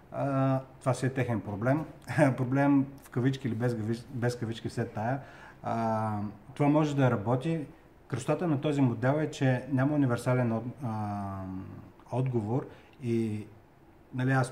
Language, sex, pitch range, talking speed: Bulgarian, male, 110-130 Hz, 130 wpm